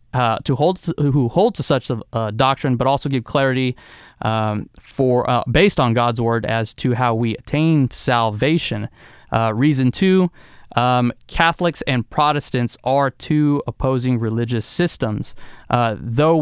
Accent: American